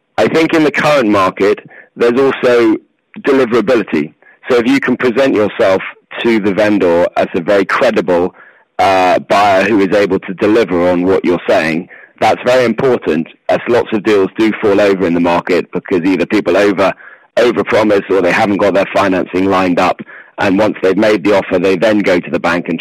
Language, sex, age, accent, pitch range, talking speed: French, male, 30-49, British, 95-130 Hz, 190 wpm